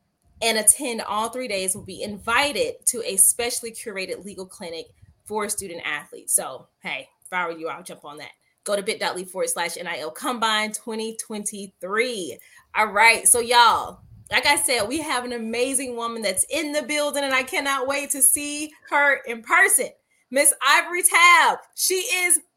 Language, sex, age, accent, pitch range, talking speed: English, female, 20-39, American, 210-290 Hz, 170 wpm